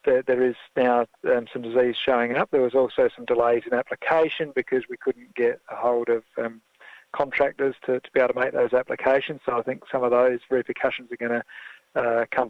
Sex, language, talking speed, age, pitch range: male, English, 210 wpm, 40-59, 120-145 Hz